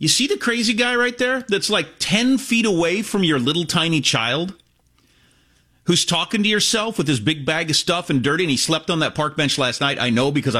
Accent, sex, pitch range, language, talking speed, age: American, male, 140-215 Hz, English, 230 wpm, 40-59